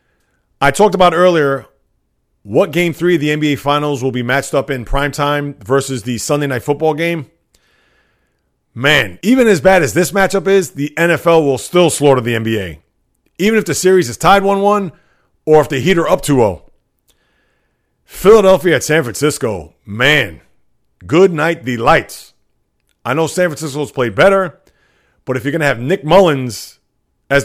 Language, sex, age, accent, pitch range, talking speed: English, male, 30-49, American, 125-160 Hz, 165 wpm